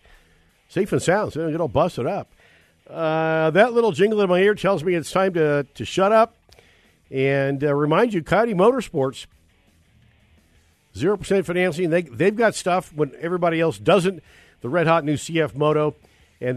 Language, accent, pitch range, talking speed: English, American, 120-170 Hz, 165 wpm